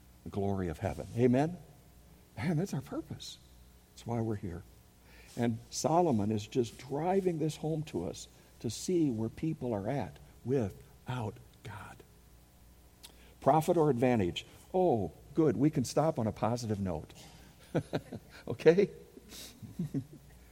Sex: male